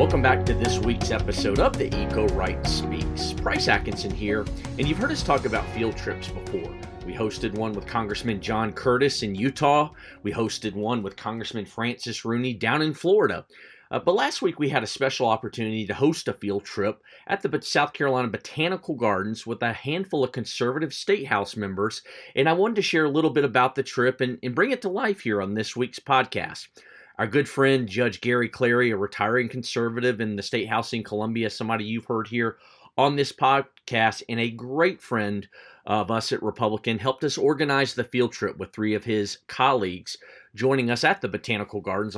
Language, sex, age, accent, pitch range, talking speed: English, male, 40-59, American, 105-135 Hz, 195 wpm